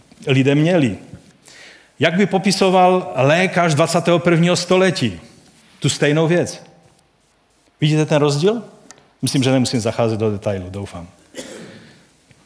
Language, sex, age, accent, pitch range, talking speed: Czech, male, 40-59, native, 125-155 Hz, 100 wpm